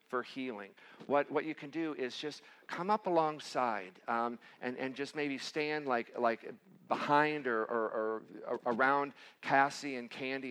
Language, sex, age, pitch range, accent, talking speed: English, male, 50-69, 130-150 Hz, American, 160 wpm